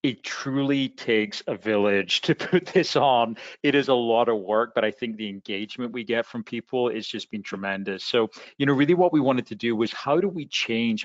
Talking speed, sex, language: 230 wpm, male, English